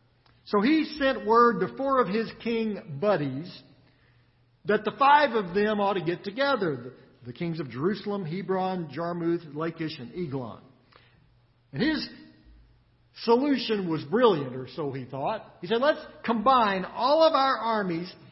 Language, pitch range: English, 160-230 Hz